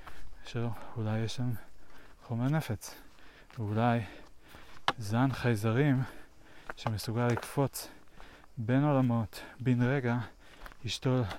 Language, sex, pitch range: Hebrew, male, 105-125 Hz